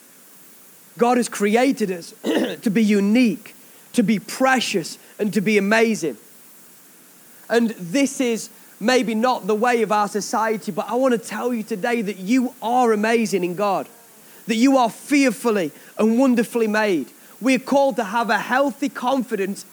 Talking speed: 160 wpm